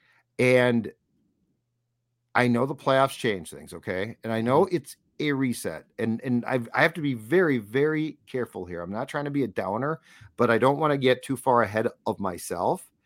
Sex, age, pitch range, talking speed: male, 50-69, 115-145 Hz, 200 wpm